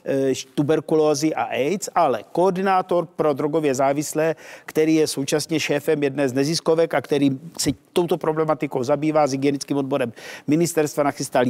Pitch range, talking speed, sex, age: 140-165 Hz, 135 wpm, male, 50-69